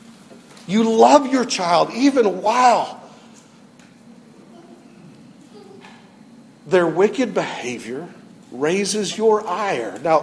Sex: male